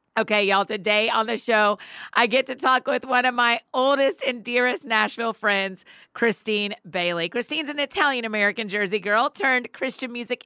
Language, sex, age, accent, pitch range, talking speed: English, female, 40-59, American, 200-255 Hz, 165 wpm